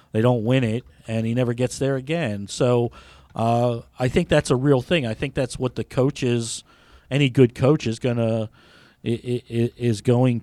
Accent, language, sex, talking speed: American, English, male, 180 wpm